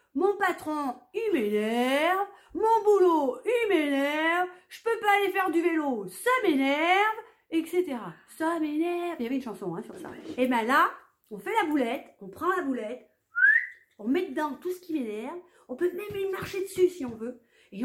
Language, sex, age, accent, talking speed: French, female, 40-59, French, 190 wpm